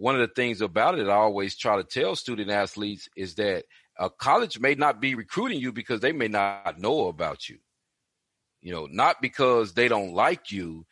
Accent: American